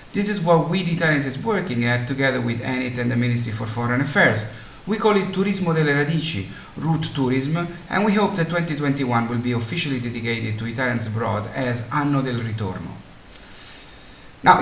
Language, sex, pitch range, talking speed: English, male, 120-165 Hz, 175 wpm